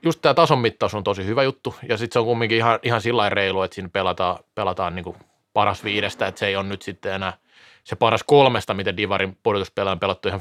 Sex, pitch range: male, 100-120 Hz